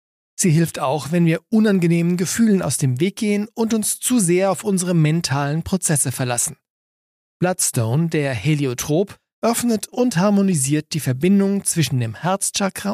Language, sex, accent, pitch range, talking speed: German, male, German, 140-195 Hz, 145 wpm